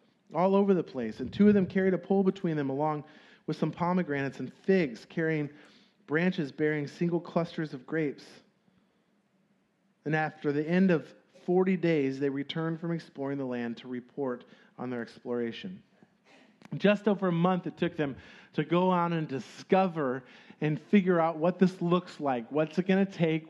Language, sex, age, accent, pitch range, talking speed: English, male, 40-59, American, 155-205 Hz, 175 wpm